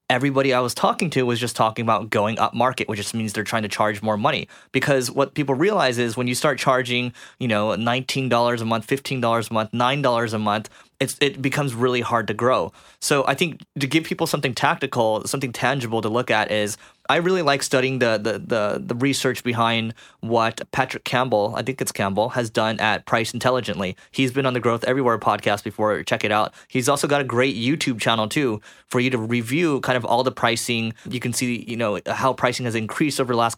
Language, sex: English, male